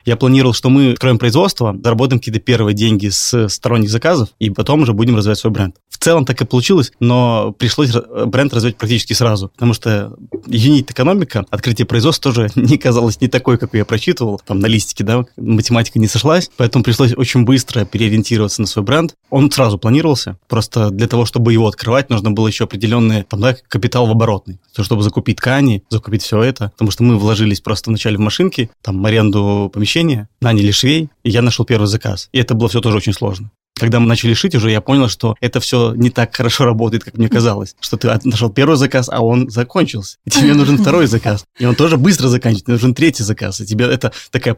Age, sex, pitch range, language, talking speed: 20-39, male, 110-125 Hz, Russian, 200 wpm